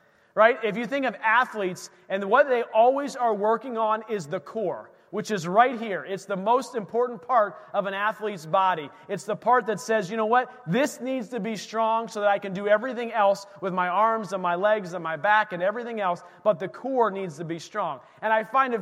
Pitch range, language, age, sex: 205-270 Hz, English, 40-59, male